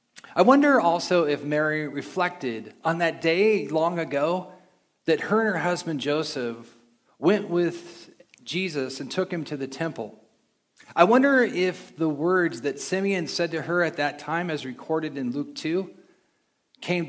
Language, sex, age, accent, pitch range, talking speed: English, male, 40-59, American, 150-210 Hz, 160 wpm